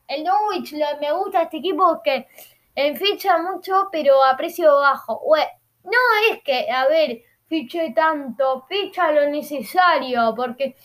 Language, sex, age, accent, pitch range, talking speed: Spanish, female, 10-29, Argentinian, 245-335 Hz, 140 wpm